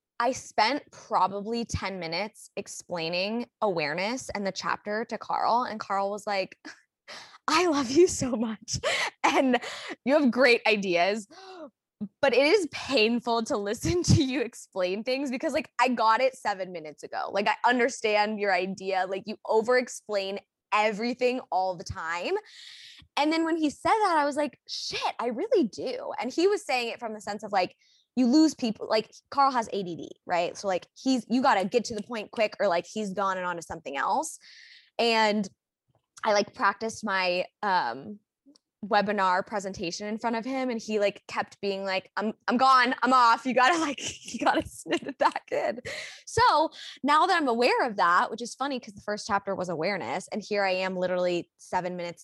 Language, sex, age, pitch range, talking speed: English, female, 20-39, 195-275 Hz, 185 wpm